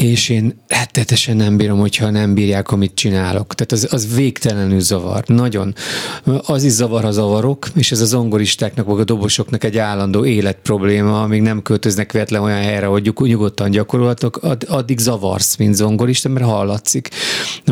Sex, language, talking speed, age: male, Hungarian, 155 wpm, 30-49